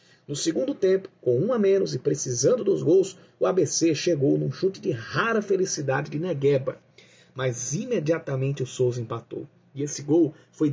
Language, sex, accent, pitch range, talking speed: Portuguese, male, Brazilian, 135-185 Hz, 170 wpm